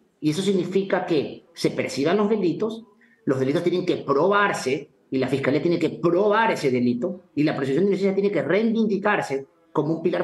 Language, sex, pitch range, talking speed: English, male, 130-190 Hz, 190 wpm